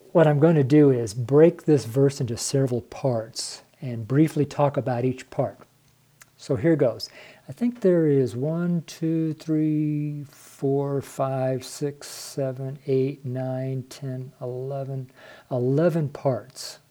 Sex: male